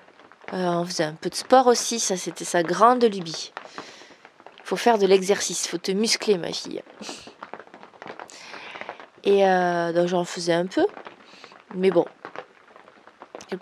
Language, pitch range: French, 175-210 Hz